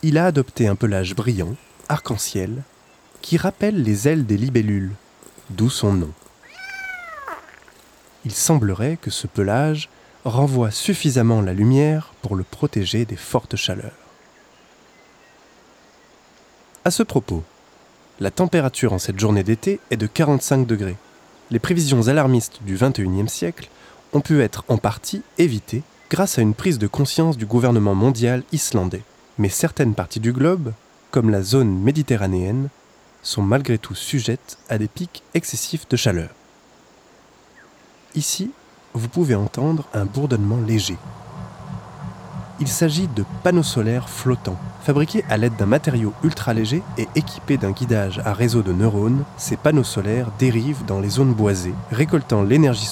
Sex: male